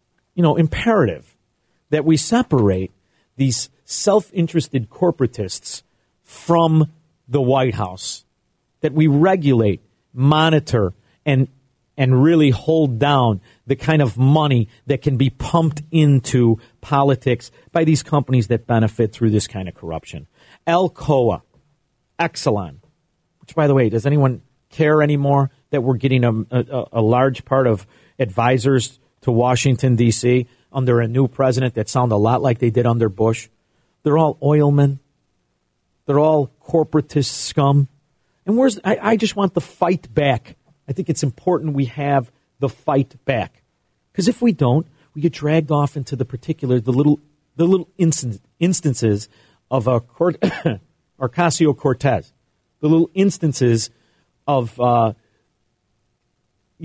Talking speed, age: 135 wpm, 40-59